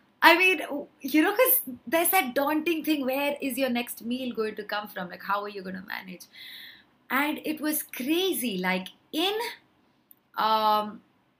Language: English